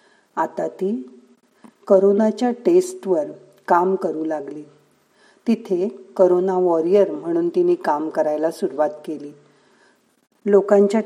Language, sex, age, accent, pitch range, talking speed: Marathi, female, 50-69, native, 170-215 Hz, 90 wpm